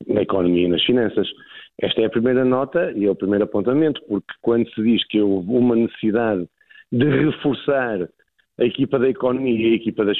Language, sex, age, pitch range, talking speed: Portuguese, male, 50-69, 110-180 Hz, 195 wpm